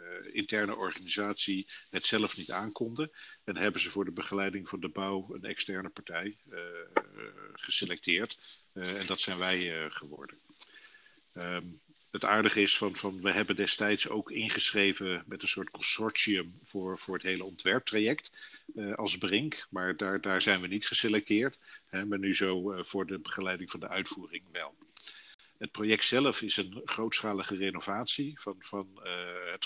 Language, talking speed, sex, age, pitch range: Dutch, 160 wpm, male, 50-69, 95-105 Hz